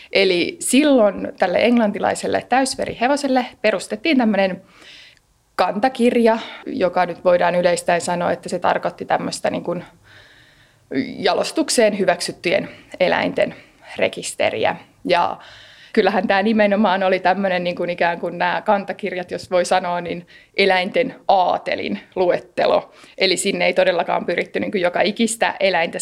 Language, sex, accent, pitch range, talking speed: Finnish, female, native, 180-225 Hz, 120 wpm